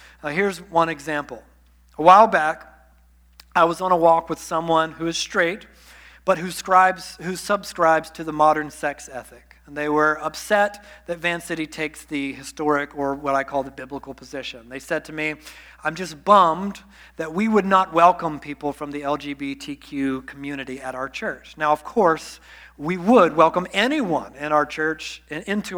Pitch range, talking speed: 145-180 Hz, 175 wpm